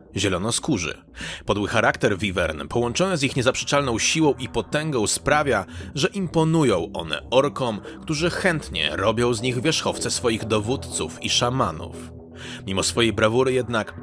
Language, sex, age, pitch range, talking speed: Polish, male, 30-49, 105-145 Hz, 135 wpm